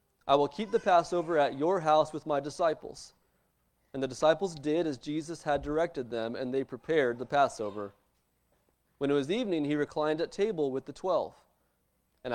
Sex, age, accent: male, 30-49, American